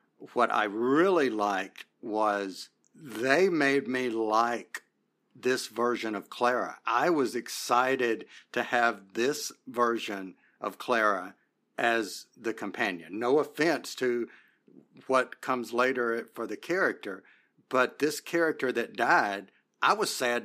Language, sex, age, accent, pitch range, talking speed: English, male, 50-69, American, 115-135 Hz, 125 wpm